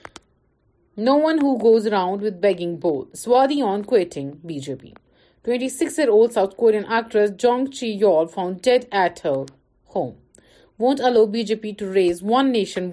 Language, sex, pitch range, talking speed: Urdu, female, 185-250 Hz, 135 wpm